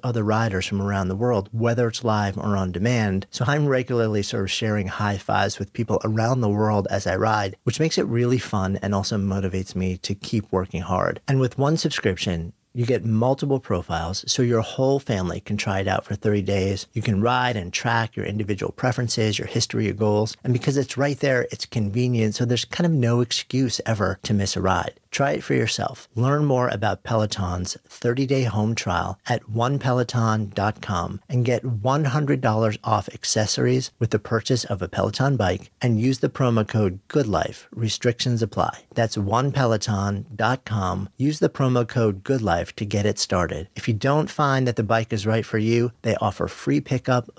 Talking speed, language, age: 190 wpm, English, 40-59